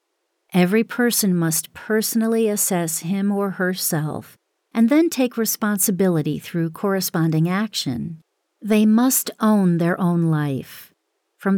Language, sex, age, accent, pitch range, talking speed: English, female, 40-59, American, 160-215 Hz, 115 wpm